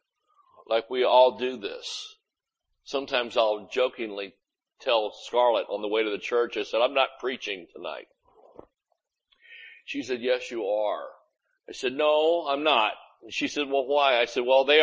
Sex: male